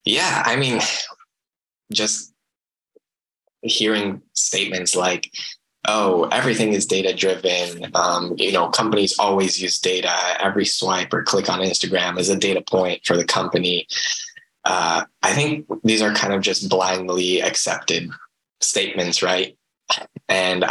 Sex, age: male, 10-29